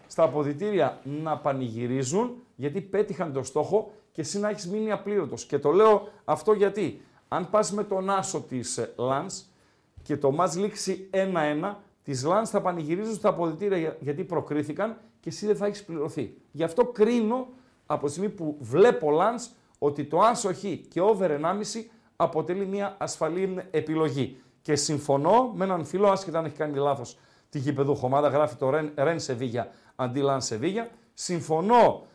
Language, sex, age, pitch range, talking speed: Greek, male, 50-69, 150-205 Hz, 155 wpm